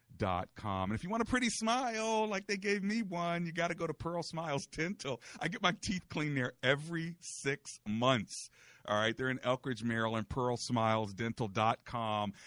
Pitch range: 105-140 Hz